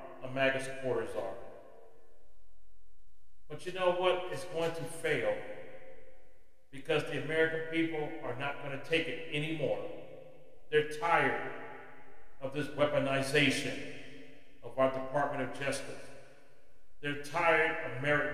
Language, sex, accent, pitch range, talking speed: English, male, American, 135-165 Hz, 120 wpm